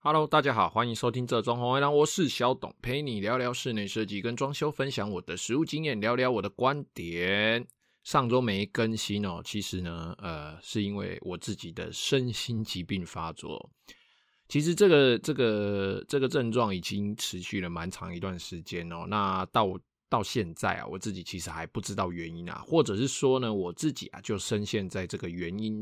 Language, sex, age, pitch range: Chinese, male, 20-39, 90-120 Hz